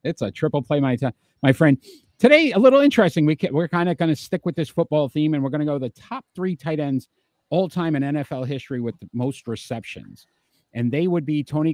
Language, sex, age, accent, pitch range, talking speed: English, male, 50-69, American, 115-155 Hz, 250 wpm